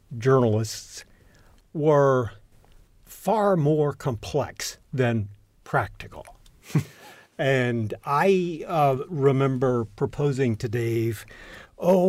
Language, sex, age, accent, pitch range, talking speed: English, male, 50-69, American, 120-155 Hz, 75 wpm